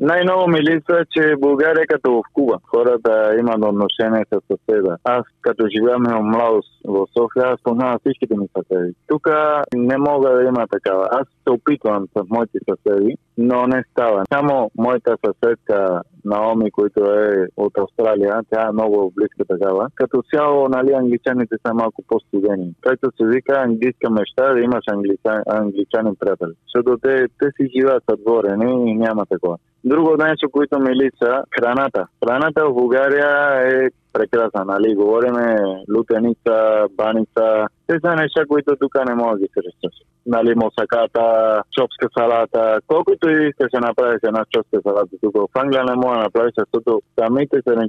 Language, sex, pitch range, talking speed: Bulgarian, male, 110-145 Hz, 160 wpm